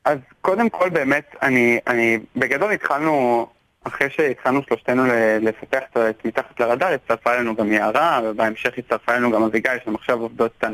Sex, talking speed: male, 150 wpm